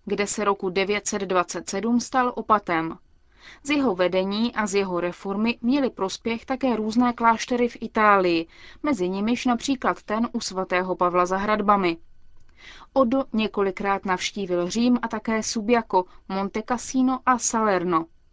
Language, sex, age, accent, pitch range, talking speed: Czech, female, 20-39, native, 190-235 Hz, 130 wpm